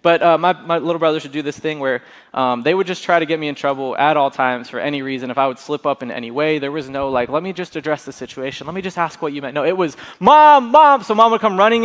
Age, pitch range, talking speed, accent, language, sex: 20-39, 180-220 Hz, 315 wpm, American, English, male